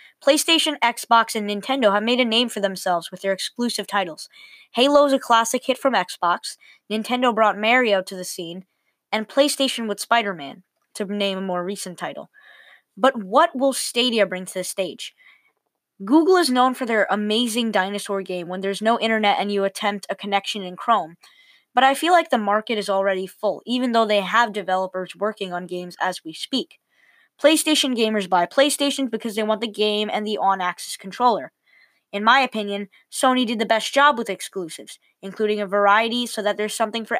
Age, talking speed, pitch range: 20-39, 185 wpm, 195-255 Hz